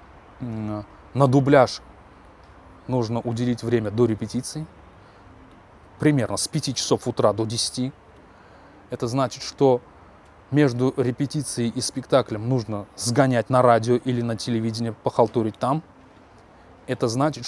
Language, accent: Russian, native